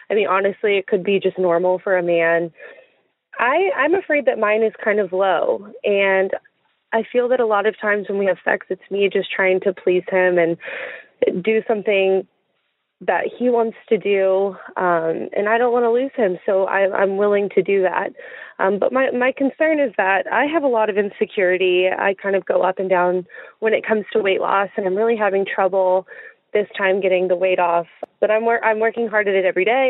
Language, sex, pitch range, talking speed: English, female, 185-225 Hz, 215 wpm